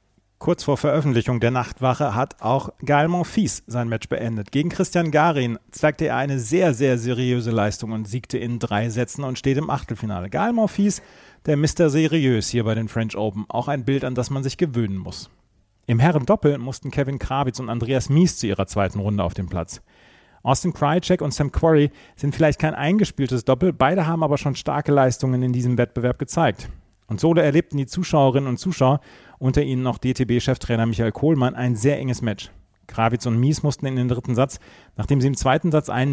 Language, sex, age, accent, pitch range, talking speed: German, male, 40-59, German, 115-145 Hz, 195 wpm